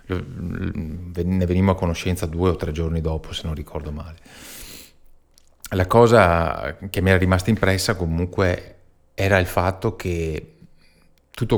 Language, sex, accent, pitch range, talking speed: Italian, male, native, 80-100 Hz, 135 wpm